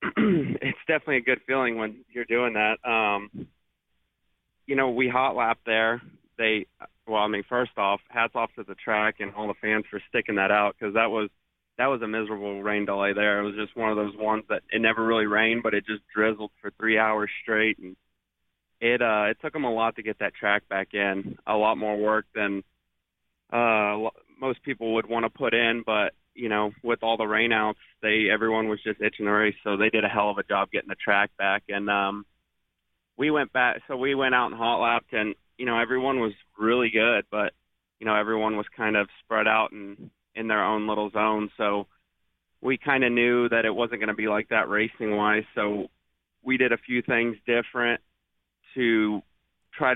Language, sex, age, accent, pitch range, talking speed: English, male, 30-49, American, 105-115 Hz, 215 wpm